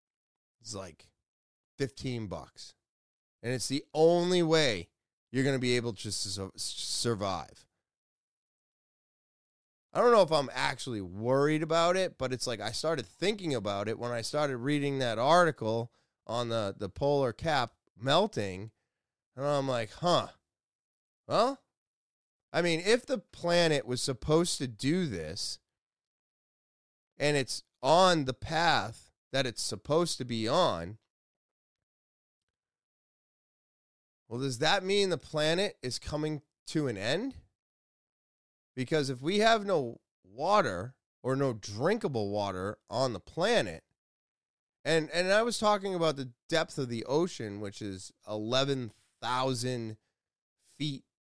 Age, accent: 30-49, American